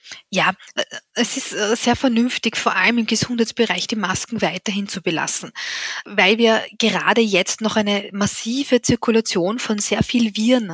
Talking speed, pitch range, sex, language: 145 wpm, 190-220 Hz, female, German